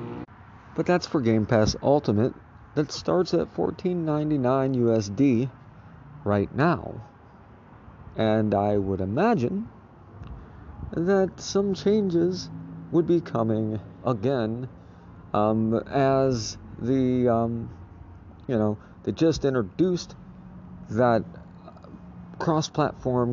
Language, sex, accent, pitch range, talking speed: English, male, American, 105-145 Hz, 90 wpm